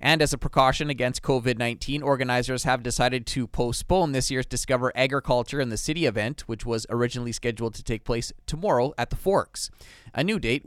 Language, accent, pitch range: English, American, 115-145 Hz